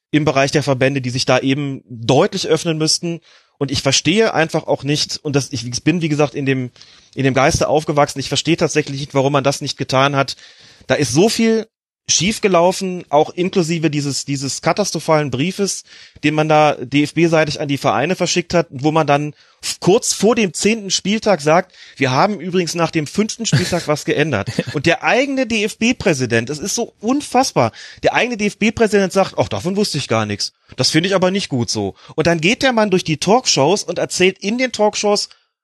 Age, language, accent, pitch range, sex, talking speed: 30-49, German, German, 140-190 Hz, male, 190 wpm